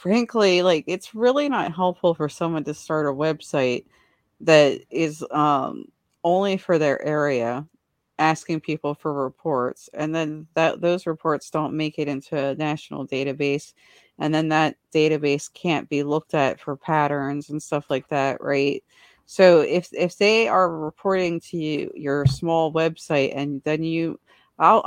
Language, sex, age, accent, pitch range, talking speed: English, female, 30-49, American, 145-180 Hz, 155 wpm